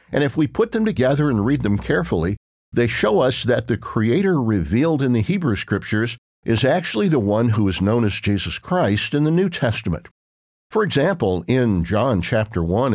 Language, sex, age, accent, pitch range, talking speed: English, male, 60-79, American, 100-135 Hz, 190 wpm